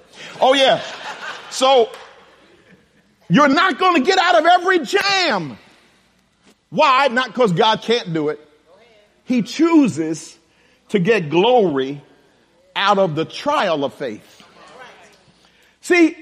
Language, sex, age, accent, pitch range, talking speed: English, male, 50-69, American, 195-265 Hz, 115 wpm